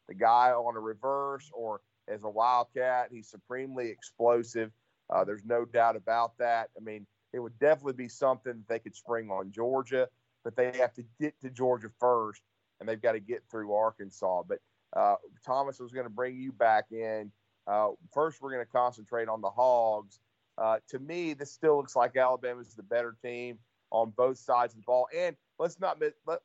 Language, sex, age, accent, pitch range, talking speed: English, male, 40-59, American, 115-135 Hz, 195 wpm